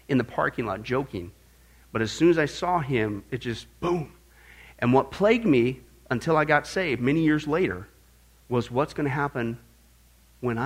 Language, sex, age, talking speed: English, male, 50-69, 180 wpm